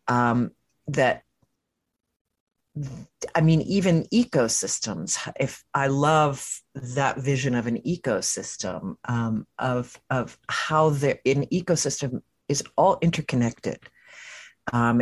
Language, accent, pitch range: English, American, 125-155 Hz